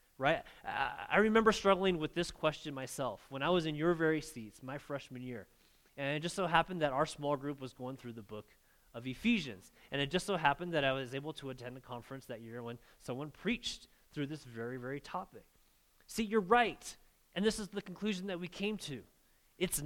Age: 30-49